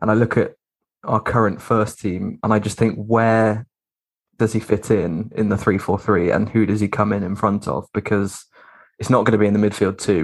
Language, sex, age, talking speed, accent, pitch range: English, male, 20-39, 230 wpm, British, 100-110 Hz